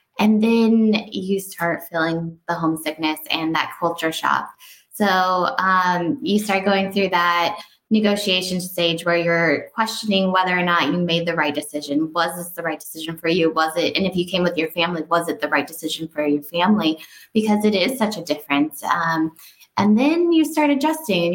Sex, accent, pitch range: female, American, 170-195 Hz